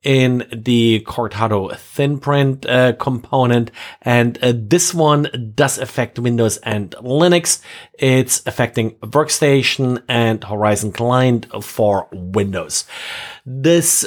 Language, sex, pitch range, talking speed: English, male, 115-145 Hz, 105 wpm